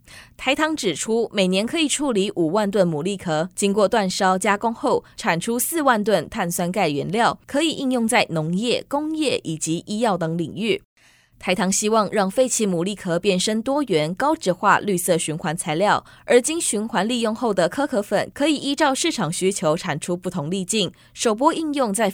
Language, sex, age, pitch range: Chinese, female, 20-39, 175-240 Hz